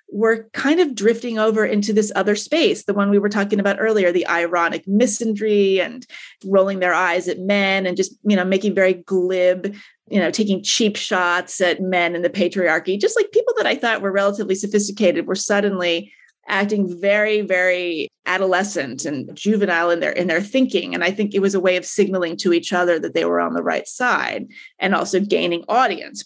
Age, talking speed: 30-49, 200 wpm